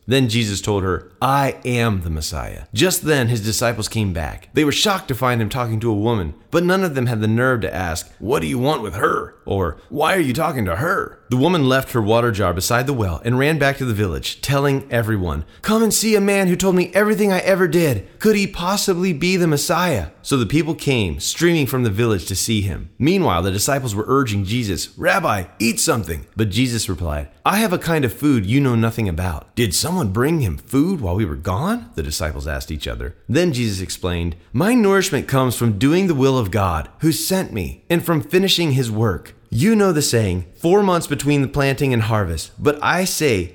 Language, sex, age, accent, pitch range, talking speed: English, male, 30-49, American, 105-165 Hz, 225 wpm